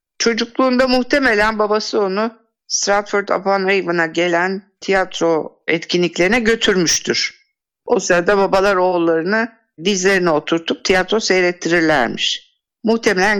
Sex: female